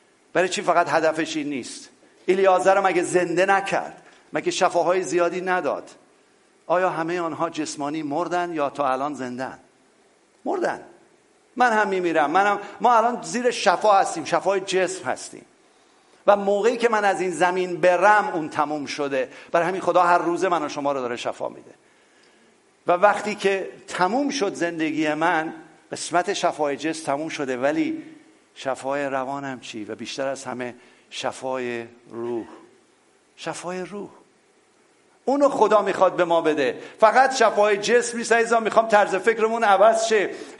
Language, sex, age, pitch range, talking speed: English, male, 50-69, 160-235 Hz, 145 wpm